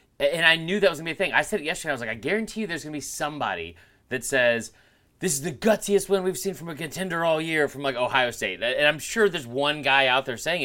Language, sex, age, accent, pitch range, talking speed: English, male, 30-49, American, 135-190 Hz, 285 wpm